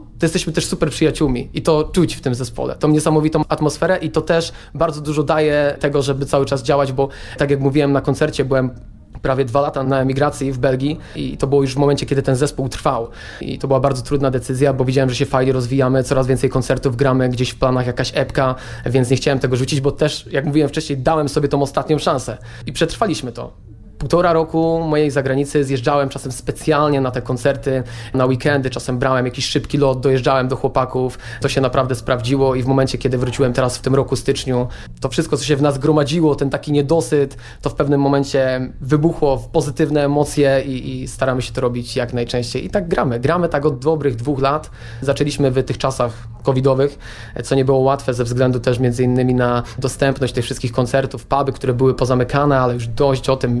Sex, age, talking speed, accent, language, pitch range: male, 20-39, 205 wpm, native, Polish, 130-145 Hz